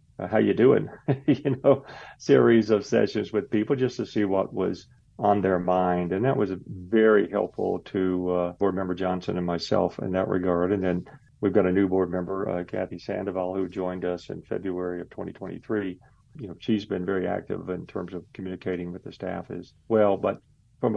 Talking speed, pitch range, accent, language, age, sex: 195 wpm, 90-110 Hz, American, English, 50-69, male